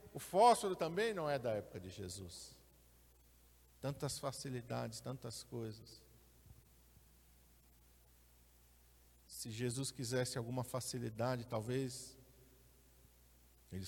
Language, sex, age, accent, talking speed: Portuguese, male, 50-69, Brazilian, 85 wpm